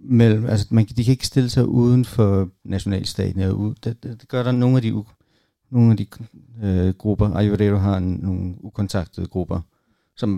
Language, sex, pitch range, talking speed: Danish, male, 100-115 Hz, 170 wpm